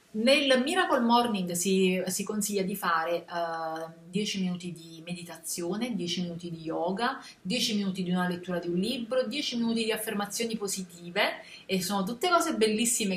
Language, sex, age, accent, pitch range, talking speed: Italian, female, 30-49, native, 180-230 Hz, 160 wpm